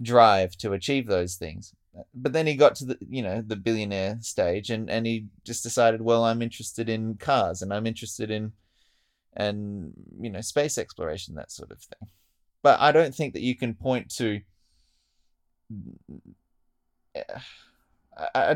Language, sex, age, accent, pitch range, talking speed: English, male, 20-39, Australian, 100-125 Hz, 160 wpm